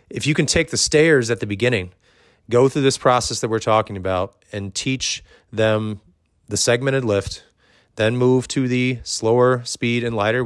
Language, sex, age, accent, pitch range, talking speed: English, male, 30-49, American, 100-120 Hz, 180 wpm